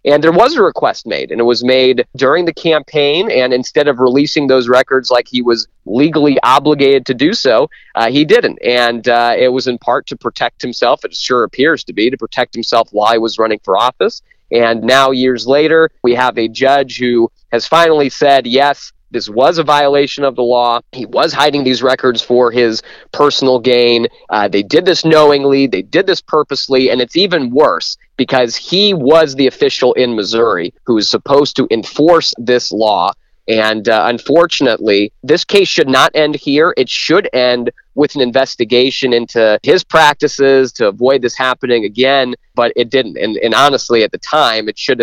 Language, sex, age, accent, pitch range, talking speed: English, male, 30-49, American, 120-145 Hz, 190 wpm